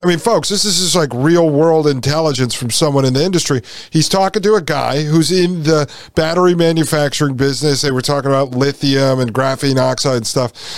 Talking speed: 195 wpm